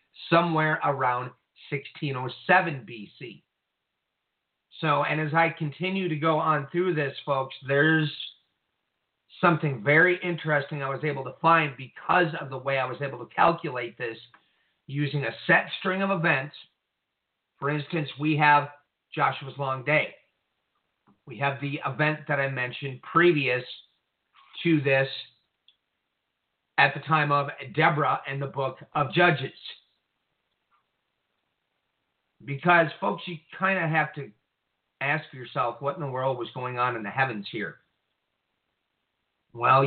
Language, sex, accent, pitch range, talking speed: English, male, American, 135-160 Hz, 130 wpm